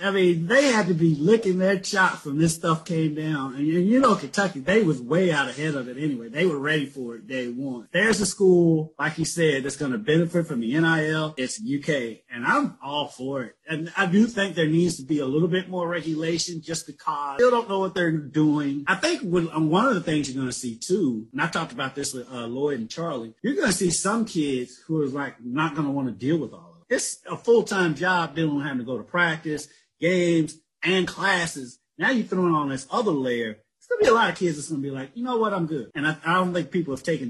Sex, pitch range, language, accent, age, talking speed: male, 130-175 Hz, English, American, 30-49, 255 wpm